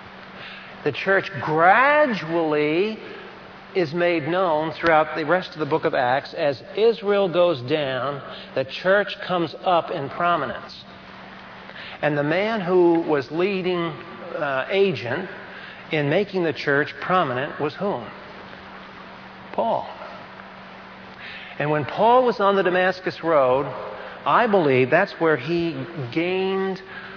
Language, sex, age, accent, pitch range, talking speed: English, male, 50-69, American, 145-190 Hz, 120 wpm